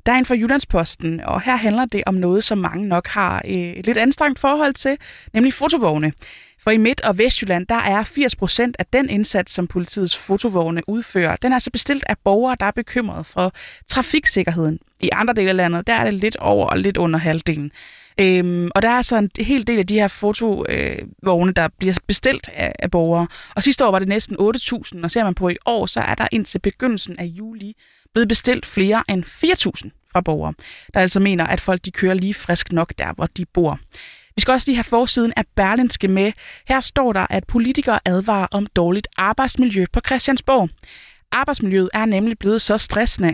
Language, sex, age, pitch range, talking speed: Danish, female, 20-39, 180-235 Hz, 200 wpm